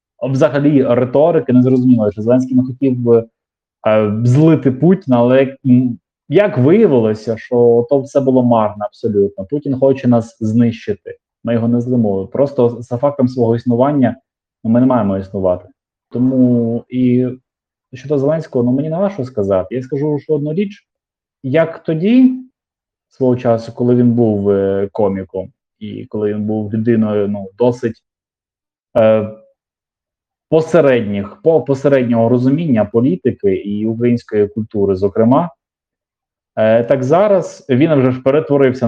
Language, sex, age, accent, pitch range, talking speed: Ukrainian, male, 20-39, native, 115-140 Hz, 135 wpm